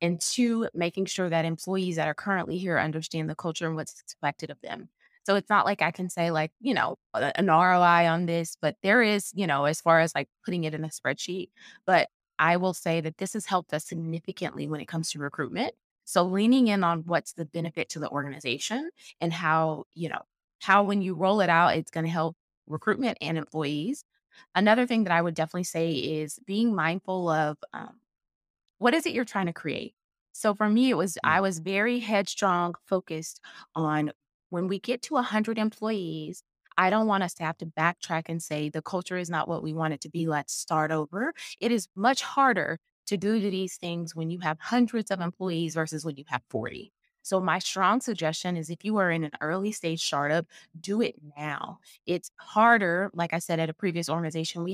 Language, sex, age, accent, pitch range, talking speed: English, female, 20-39, American, 160-200 Hz, 210 wpm